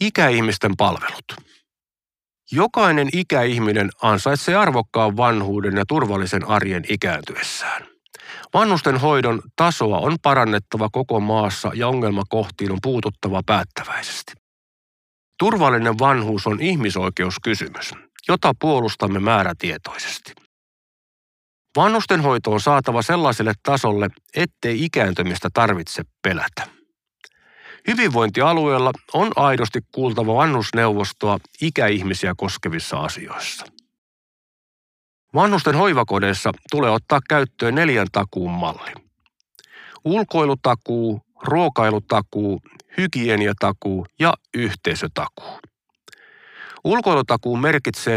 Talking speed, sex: 80 wpm, male